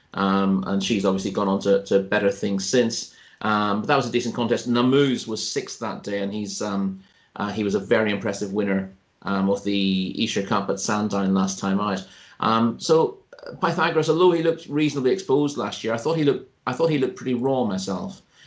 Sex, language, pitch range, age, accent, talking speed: male, English, 100-125 Hz, 30-49, British, 210 wpm